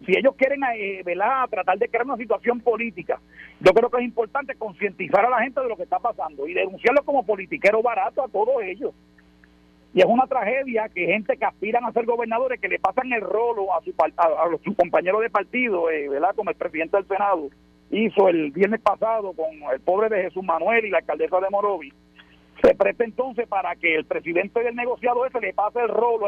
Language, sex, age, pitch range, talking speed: Spanish, male, 50-69, 190-245 Hz, 210 wpm